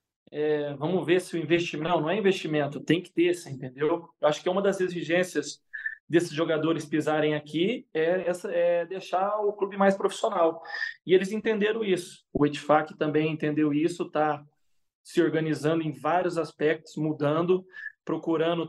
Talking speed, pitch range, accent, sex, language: 155 wpm, 155-180 Hz, Brazilian, male, Portuguese